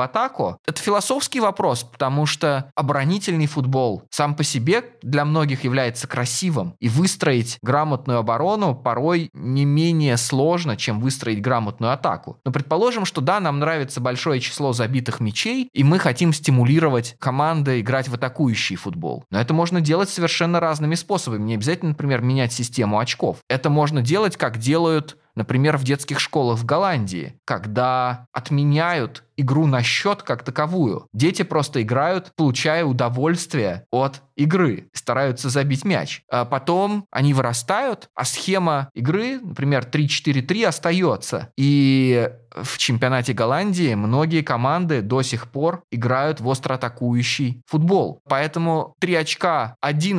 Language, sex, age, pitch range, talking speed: Russian, male, 20-39, 120-160 Hz, 135 wpm